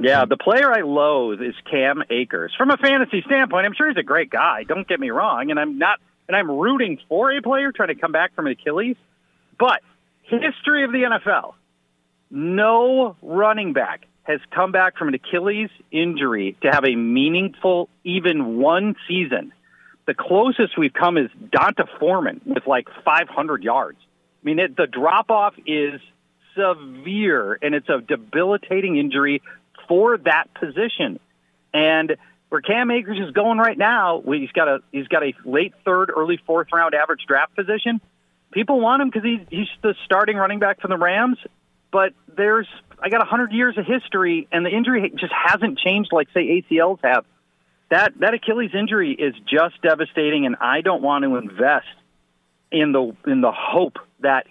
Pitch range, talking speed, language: 145-220 Hz, 175 wpm, English